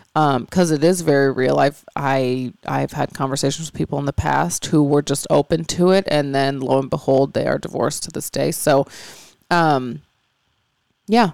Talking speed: 190 wpm